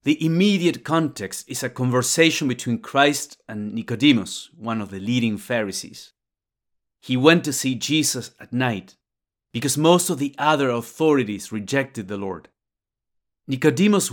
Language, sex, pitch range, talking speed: English, male, 115-145 Hz, 135 wpm